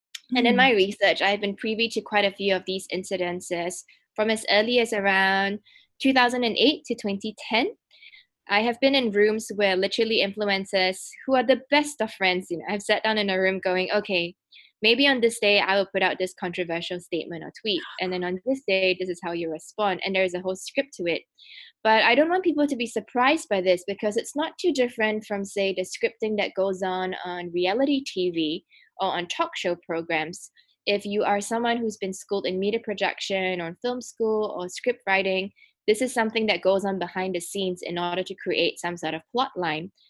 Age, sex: 10-29, female